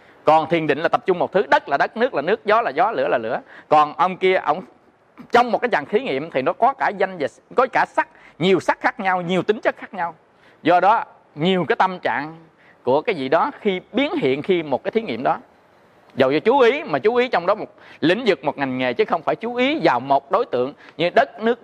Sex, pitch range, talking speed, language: male, 145-225 Hz, 260 wpm, Vietnamese